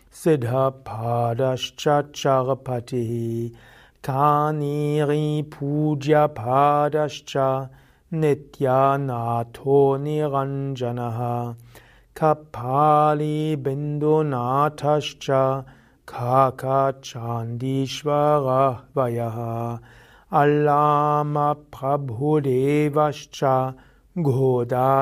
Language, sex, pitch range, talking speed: German, male, 130-150 Hz, 35 wpm